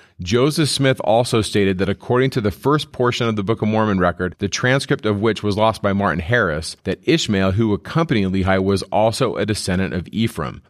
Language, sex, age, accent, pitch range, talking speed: English, male, 40-59, American, 95-115 Hz, 200 wpm